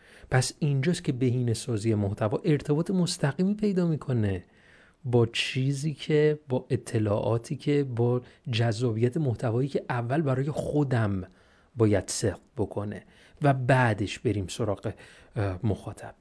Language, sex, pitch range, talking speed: Persian, male, 110-140 Hz, 110 wpm